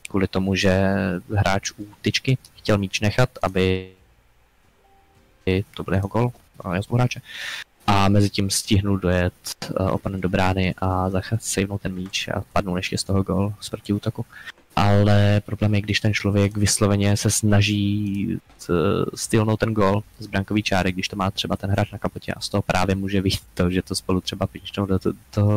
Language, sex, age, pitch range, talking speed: Slovak, male, 20-39, 90-100 Hz, 180 wpm